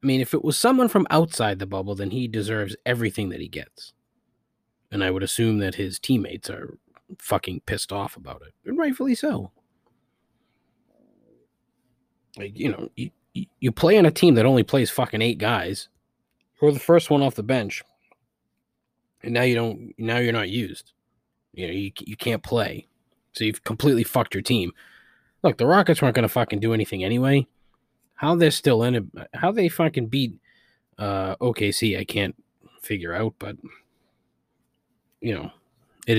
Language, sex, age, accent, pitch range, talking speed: English, male, 20-39, American, 105-140 Hz, 175 wpm